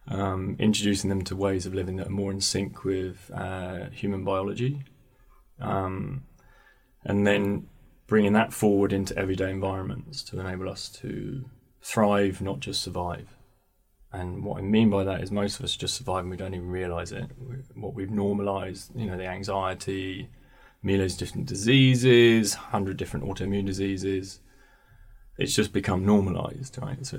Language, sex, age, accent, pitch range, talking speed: English, male, 20-39, British, 95-125 Hz, 160 wpm